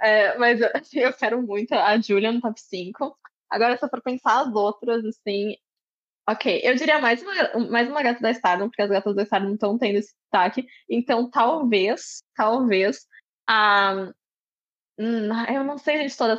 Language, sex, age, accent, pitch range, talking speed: Portuguese, female, 10-29, Brazilian, 200-235 Hz, 175 wpm